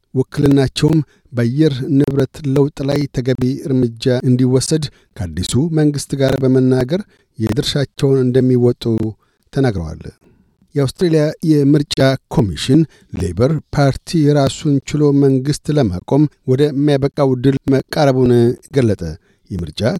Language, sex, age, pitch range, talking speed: Amharic, male, 60-79, 130-150 Hz, 90 wpm